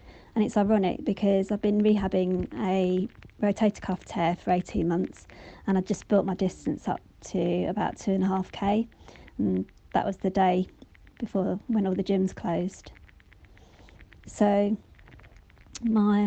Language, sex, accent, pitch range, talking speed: English, female, British, 180-200 Hz, 140 wpm